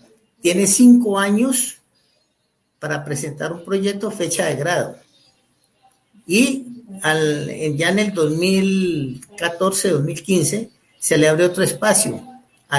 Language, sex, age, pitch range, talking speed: Spanish, male, 50-69, 150-200 Hz, 105 wpm